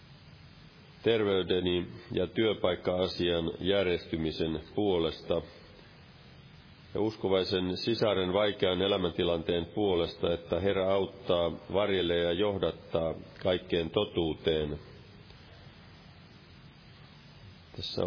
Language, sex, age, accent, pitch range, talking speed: Finnish, male, 40-59, native, 85-100 Hz, 65 wpm